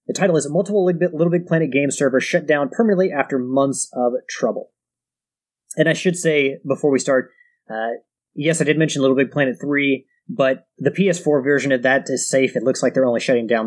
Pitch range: 130-170 Hz